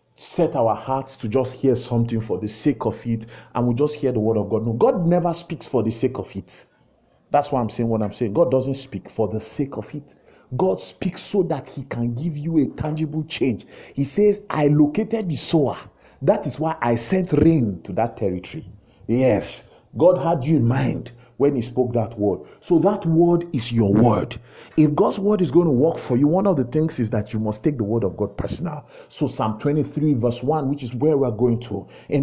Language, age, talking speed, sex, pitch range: English, 50-69, 225 wpm, male, 115-170 Hz